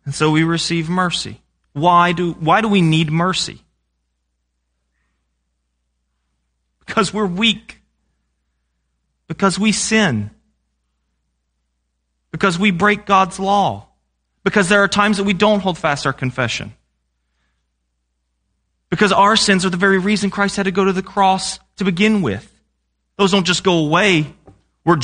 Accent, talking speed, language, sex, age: American, 135 wpm, English, male, 30-49